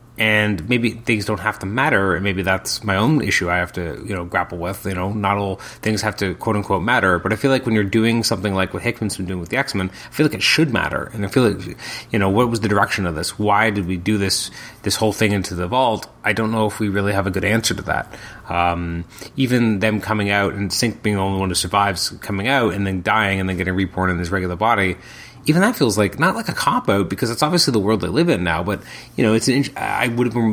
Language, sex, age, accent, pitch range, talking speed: English, male, 30-49, American, 95-115 Hz, 275 wpm